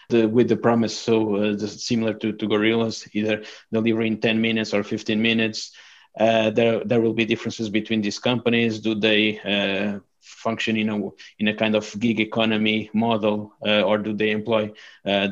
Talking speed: 175 wpm